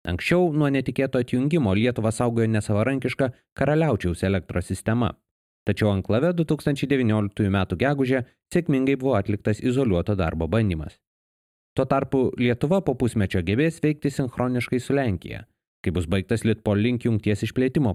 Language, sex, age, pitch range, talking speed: English, male, 30-49, 100-140 Hz, 125 wpm